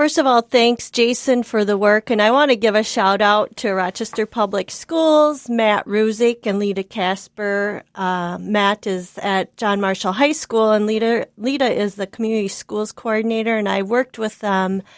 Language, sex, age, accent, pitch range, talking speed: English, female, 40-59, American, 195-235 Hz, 180 wpm